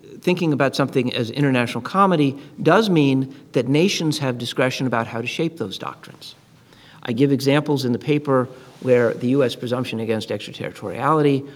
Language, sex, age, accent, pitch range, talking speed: English, male, 50-69, American, 120-150 Hz, 155 wpm